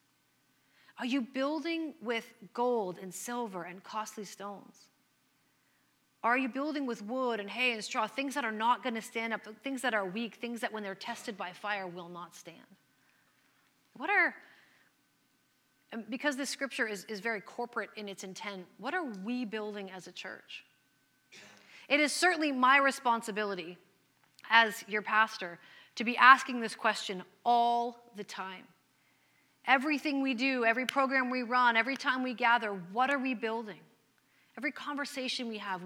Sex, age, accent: female, 30-49, American